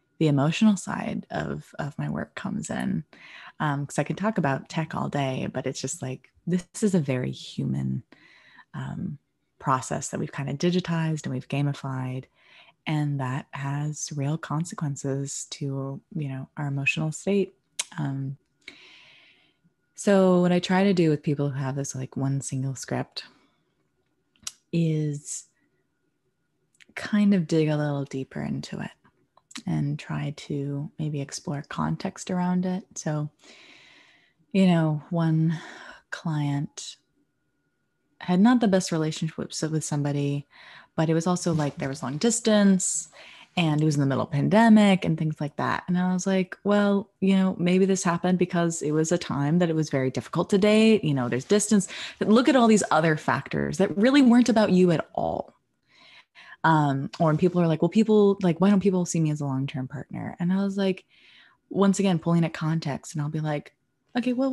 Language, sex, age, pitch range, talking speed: English, female, 20-39, 140-190 Hz, 175 wpm